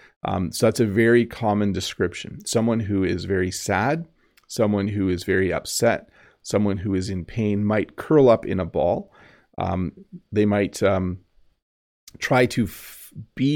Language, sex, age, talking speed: English, male, 40-59, 155 wpm